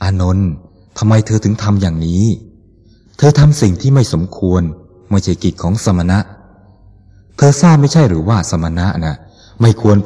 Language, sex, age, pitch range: Thai, male, 20-39, 90-105 Hz